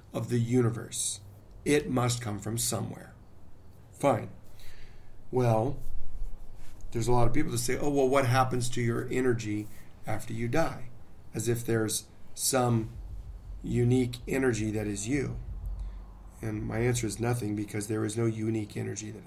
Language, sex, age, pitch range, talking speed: English, male, 40-59, 105-125 Hz, 150 wpm